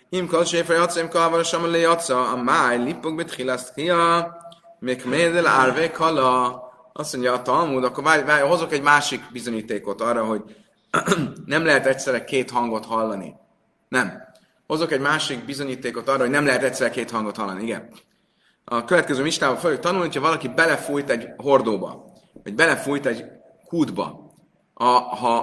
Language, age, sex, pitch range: Hungarian, 30-49, male, 130-170 Hz